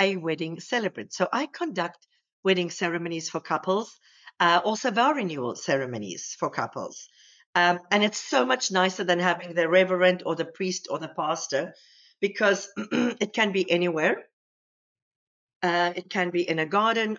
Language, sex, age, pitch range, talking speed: English, female, 50-69, 170-205 Hz, 155 wpm